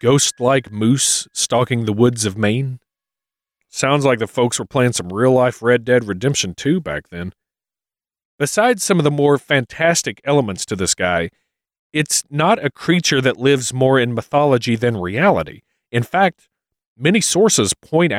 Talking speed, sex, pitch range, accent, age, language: 155 wpm, male, 105-140 Hz, American, 40-59, English